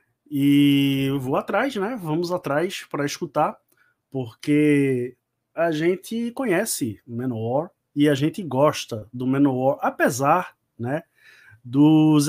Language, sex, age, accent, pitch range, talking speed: Portuguese, male, 20-39, Brazilian, 130-175 Hz, 115 wpm